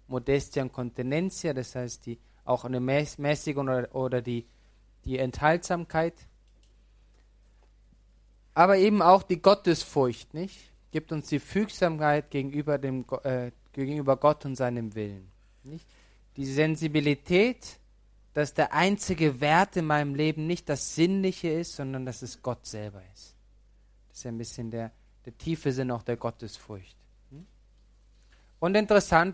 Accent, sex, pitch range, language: German, male, 115-165 Hz, German